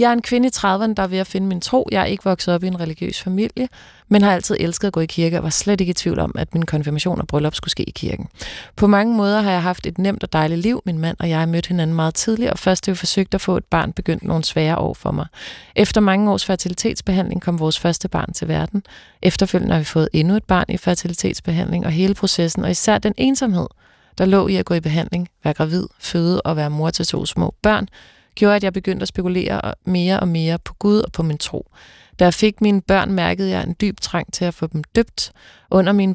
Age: 30-49